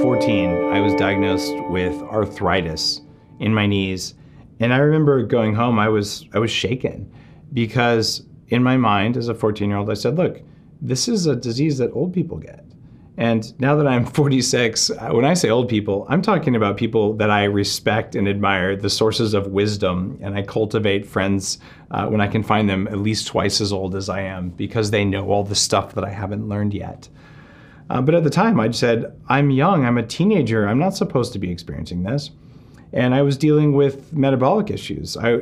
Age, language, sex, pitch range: 30-49, English, male, 100-140 Hz